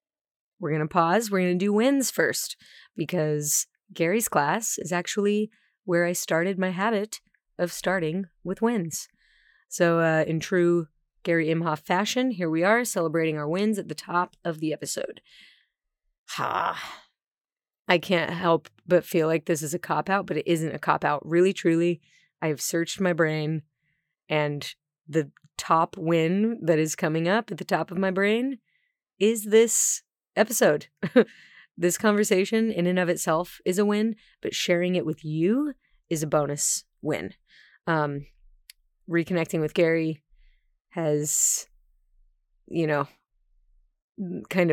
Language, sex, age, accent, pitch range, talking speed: English, female, 30-49, American, 155-195 Hz, 145 wpm